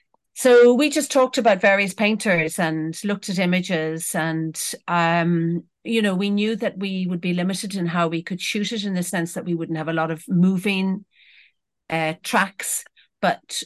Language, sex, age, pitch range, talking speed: English, female, 50-69, 165-195 Hz, 185 wpm